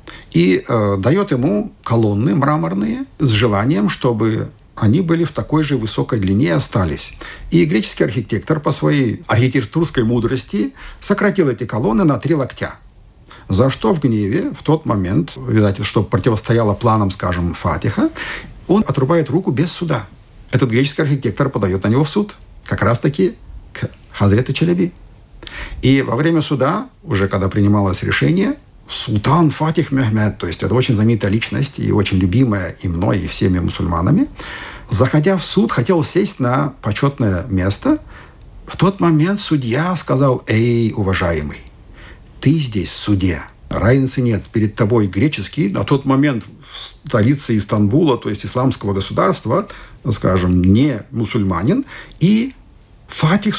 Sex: male